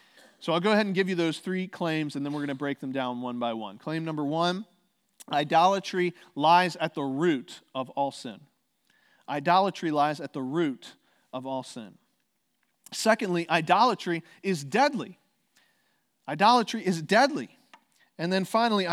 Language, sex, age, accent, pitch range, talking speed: English, male, 40-59, American, 150-205 Hz, 160 wpm